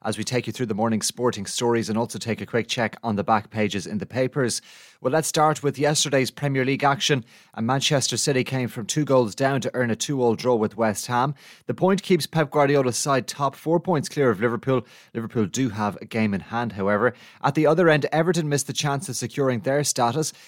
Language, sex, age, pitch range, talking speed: English, male, 30-49, 110-135 Hz, 230 wpm